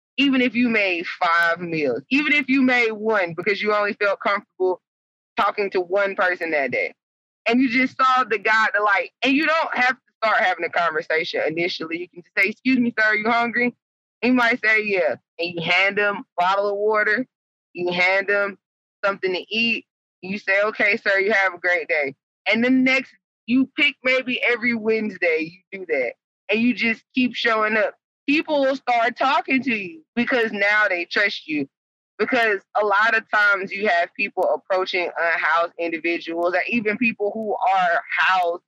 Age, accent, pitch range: 20-39, American, 185-245 Hz